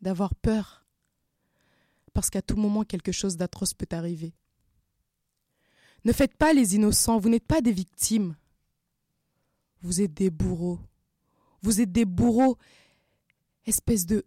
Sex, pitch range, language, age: female, 195-245 Hz, French, 20-39